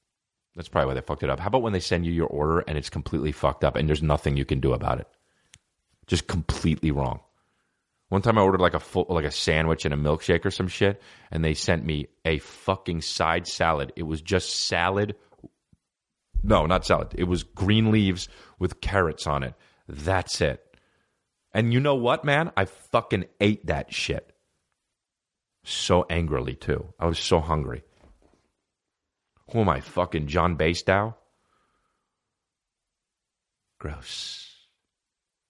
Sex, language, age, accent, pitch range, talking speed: male, English, 30-49, American, 75-95 Hz, 160 wpm